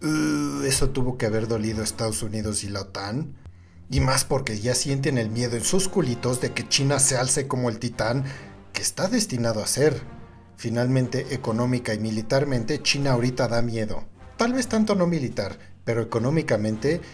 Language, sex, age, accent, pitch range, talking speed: Spanish, male, 50-69, Mexican, 110-140 Hz, 175 wpm